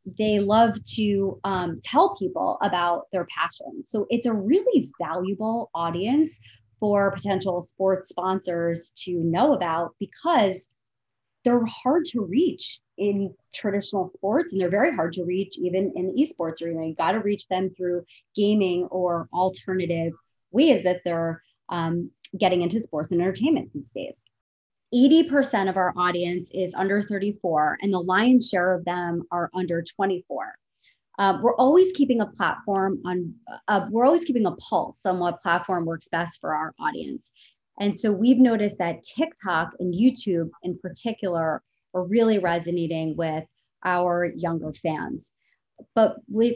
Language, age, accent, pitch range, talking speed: English, 20-39, American, 170-210 Hz, 150 wpm